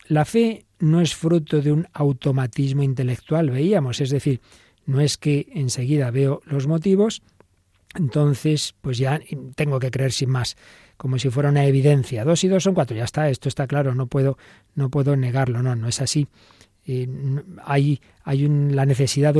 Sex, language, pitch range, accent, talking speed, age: male, Spanish, 130-155 Hz, Spanish, 180 wpm, 40-59